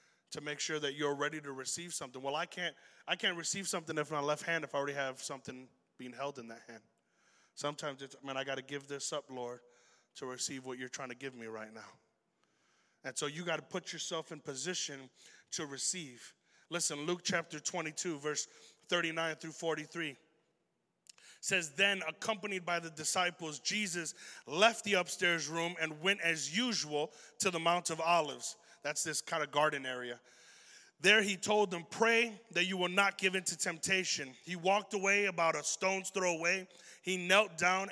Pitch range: 160-215 Hz